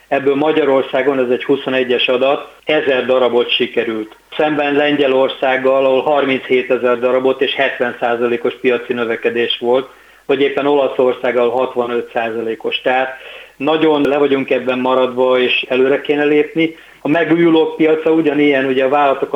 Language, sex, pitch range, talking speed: Hungarian, male, 125-140 Hz, 135 wpm